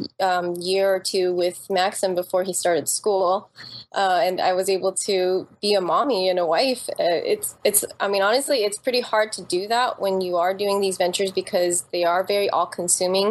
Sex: female